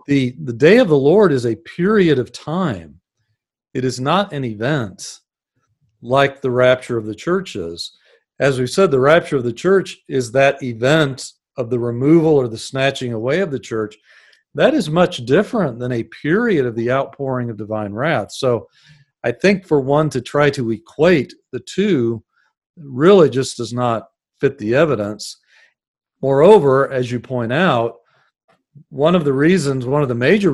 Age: 40-59